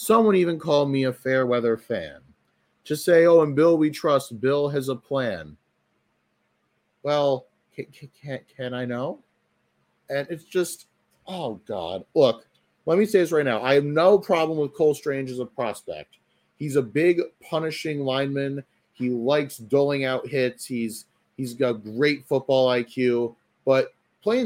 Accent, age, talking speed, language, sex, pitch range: American, 30-49, 155 wpm, English, male, 125-175 Hz